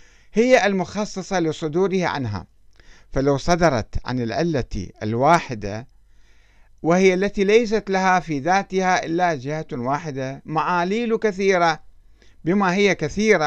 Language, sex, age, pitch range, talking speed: Arabic, male, 50-69, 110-170 Hz, 100 wpm